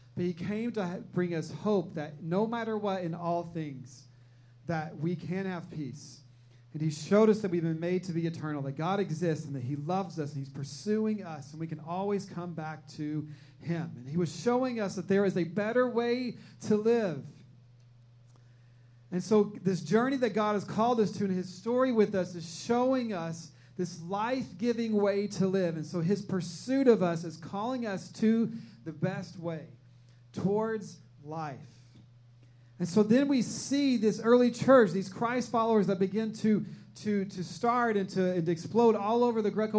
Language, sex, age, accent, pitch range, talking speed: English, male, 40-59, American, 160-220 Hz, 190 wpm